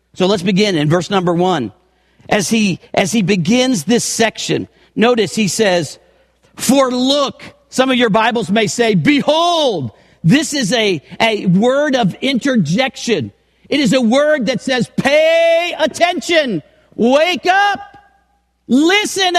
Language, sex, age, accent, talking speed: English, male, 50-69, American, 135 wpm